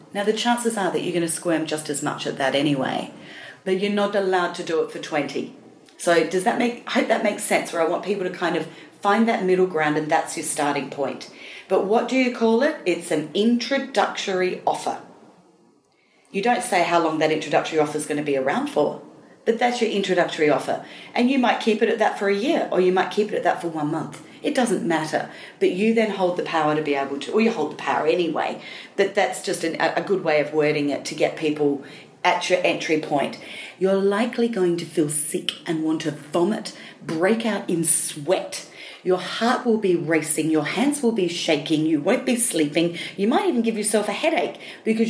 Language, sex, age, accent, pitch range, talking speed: English, female, 40-59, Australian, 160-210 Hz, 225 wpm